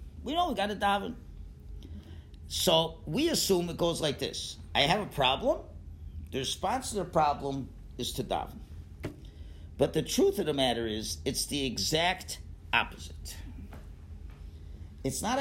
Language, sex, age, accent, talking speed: English, male, 50-69, American, 150 wpm